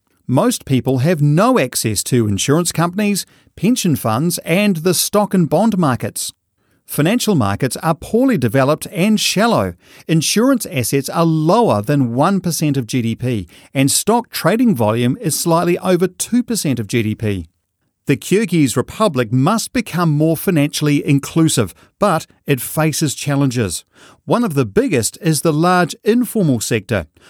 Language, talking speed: English, 135 wpm